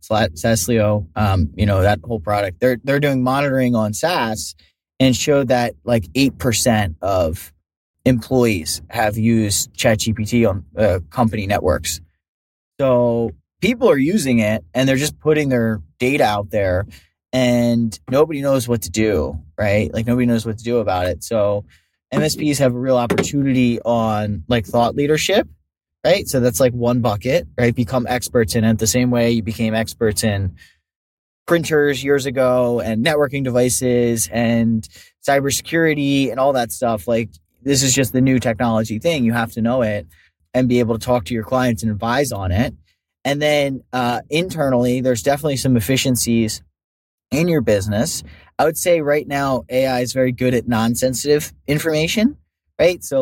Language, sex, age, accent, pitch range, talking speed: English, male, 20-39, American, 105-130 Hz, 165 wpm